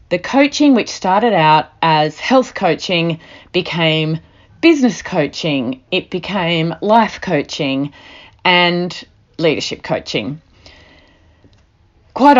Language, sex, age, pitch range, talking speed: English, female, 30-49, 140-185 Hz, 90 wpm